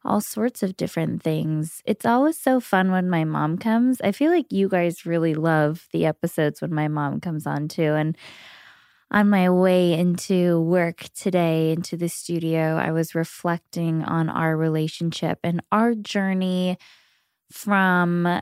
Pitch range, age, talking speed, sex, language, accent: 155-185 Hz, 20-39, 155 wpm, female, English, American